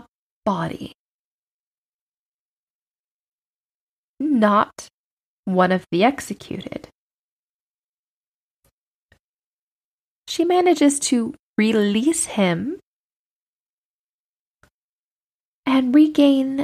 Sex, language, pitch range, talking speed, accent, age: female, English, 205-275 Hz, 45 wpm, American, 20-39